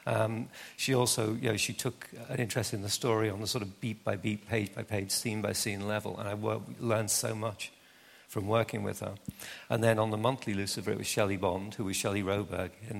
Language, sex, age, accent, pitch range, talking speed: Swedish, male, 50-69, British, 100-115 Hz, 210 wpm